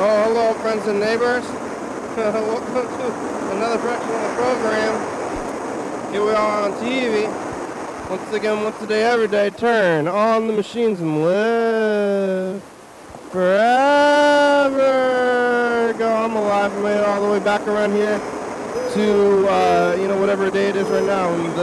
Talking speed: 150 wpm